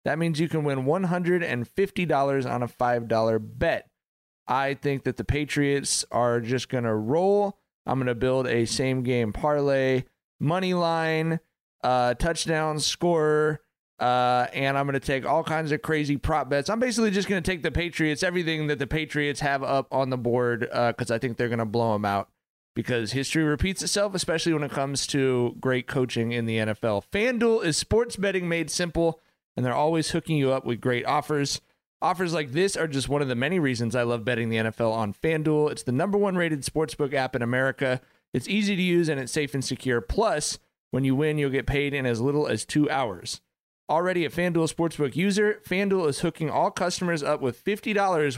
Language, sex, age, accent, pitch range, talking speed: English, male, 30-49, American, 125-165 Hz, 200 wpm